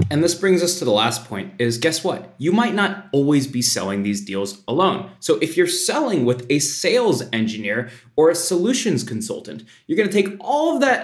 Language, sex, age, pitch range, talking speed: English, male, 20-39, 115-185 Hz, 210 wpm